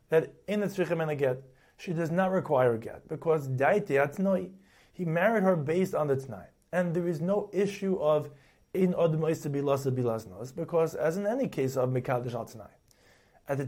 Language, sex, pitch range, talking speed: English, male, 130-185 Hz, 160 wpm